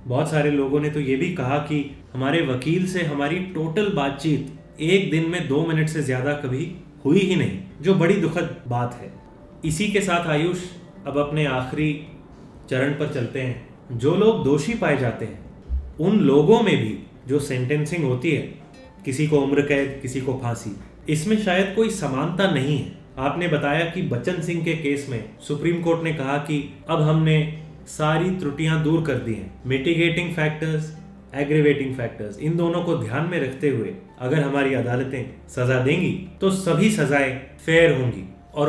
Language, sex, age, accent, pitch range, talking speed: Hindi, male, 30-49, native, 135-170 Hz, 135 wpm